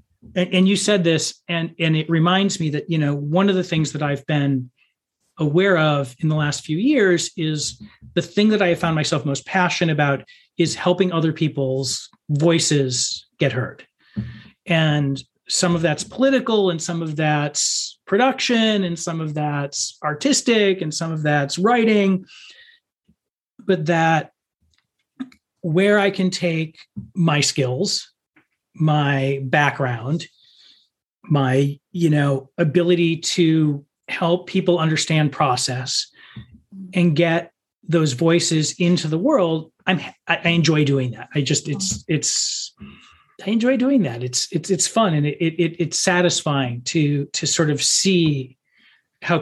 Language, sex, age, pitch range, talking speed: English, male, 40-59, 145-175 Hz, 145 wpm